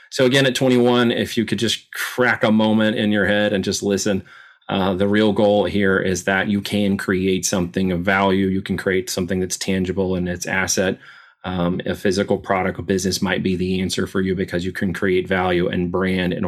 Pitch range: 95-115 Hz